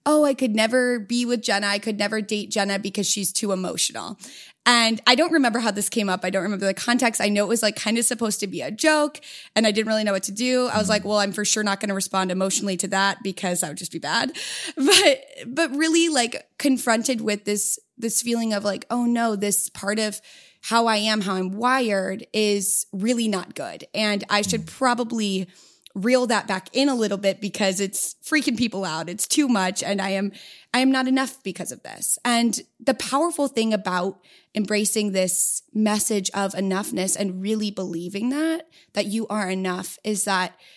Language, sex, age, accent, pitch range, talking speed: English, female, 20-39, American, 195-245 Hz, 210 wpm